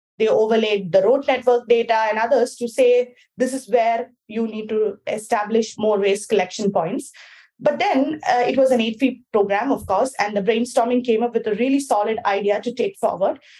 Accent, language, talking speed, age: Indian, English, 195 wpm, 20-39